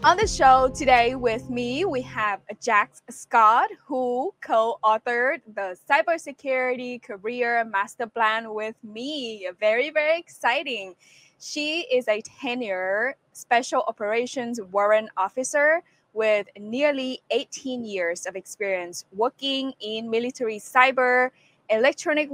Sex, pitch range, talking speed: female, 210-265 Hz, 115 wpm